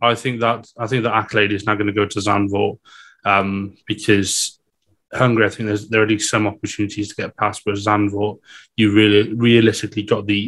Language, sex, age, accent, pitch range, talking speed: English, male, 30-49, British, 105-115 Hz, 205 wpm